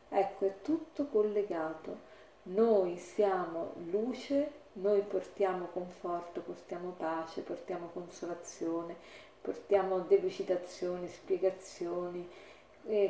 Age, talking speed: 40-59, 80 wpm